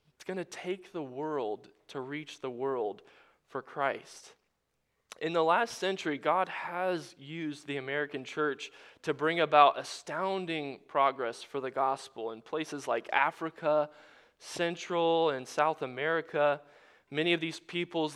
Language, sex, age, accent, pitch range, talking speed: English, male, 20-39, American, 145-175 Hz, 140 wpm